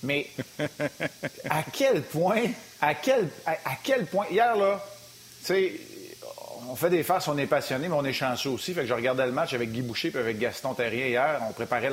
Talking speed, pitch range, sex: 205 wpm, 140-190 Hz, male